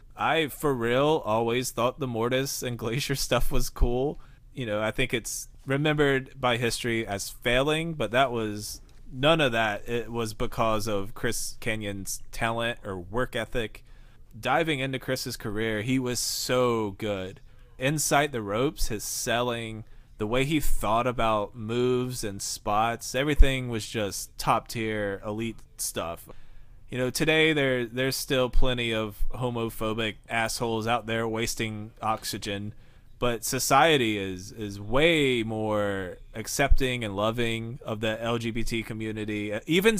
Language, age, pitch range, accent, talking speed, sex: English, 20-39, 110-130 Hz, American, 140 wpm, male